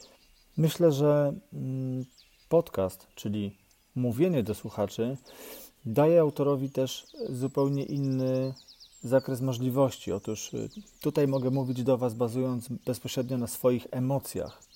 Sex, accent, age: male, native, 40-59